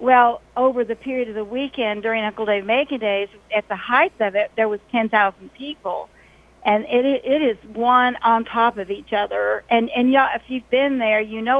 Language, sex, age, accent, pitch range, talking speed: English, female, 50-69, American, 210-250 Hz, 205 wpm